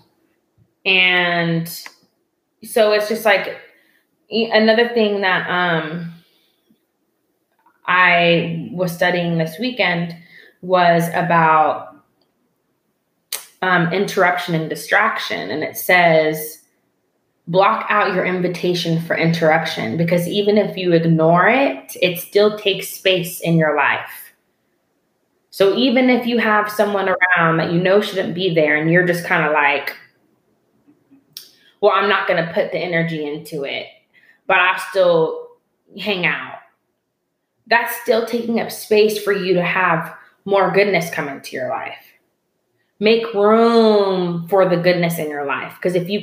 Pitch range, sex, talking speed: 170-210 Hz, female, 130 wpm